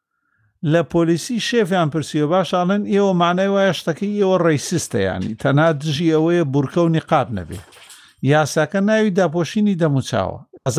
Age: 50-69